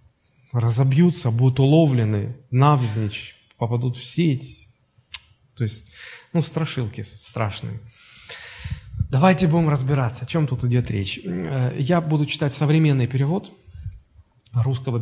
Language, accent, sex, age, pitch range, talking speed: Russian, native, male, 20-39, 120-160 Hz, 105 wpm